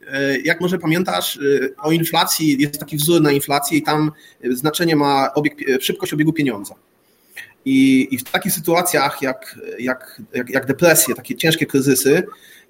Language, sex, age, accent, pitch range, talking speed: Polish, male, 30-49, native, 140-180 Hz, 135 wpm